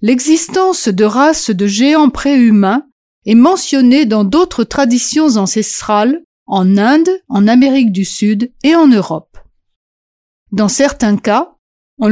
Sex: female